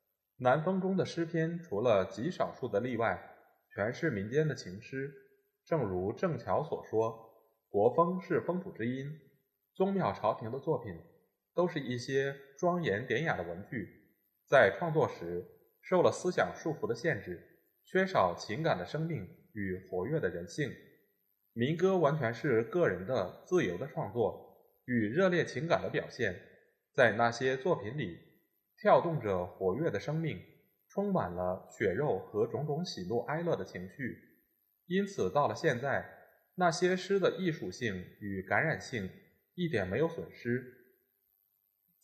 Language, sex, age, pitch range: Chinese, male, 20-39, 115-175 Hz